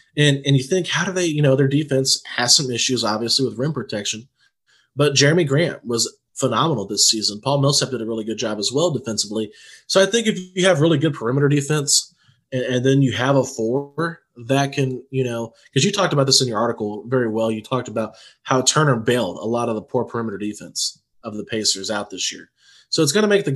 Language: English